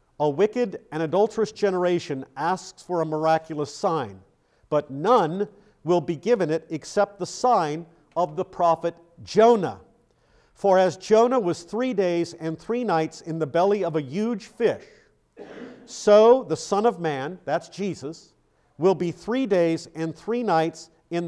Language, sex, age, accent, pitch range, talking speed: English, male, 50-69, American, 160-210 Hz, 150 wpm